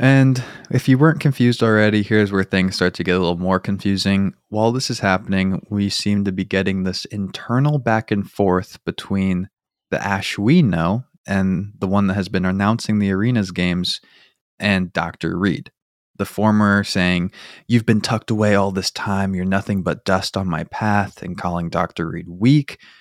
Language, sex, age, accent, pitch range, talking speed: English, male, 20-39, American, 95-110 Hz, 185 wpm